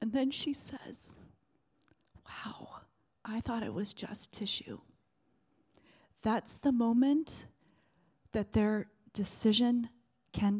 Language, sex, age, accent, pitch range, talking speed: English, female, 40-59, American, 185-230 Hz, 100 wpm